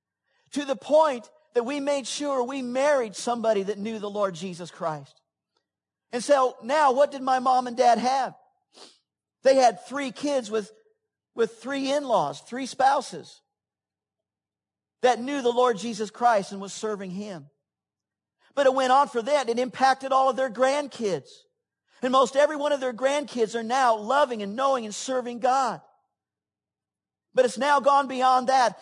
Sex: male